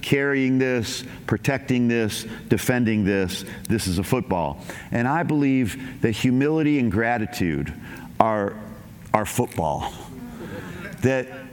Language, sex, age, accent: English, male, 50-69, American